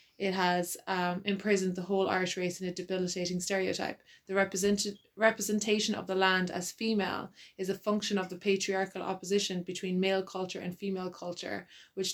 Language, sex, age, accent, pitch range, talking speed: English, female, 20-39, Irish, 180-200 Hz, 165 wpm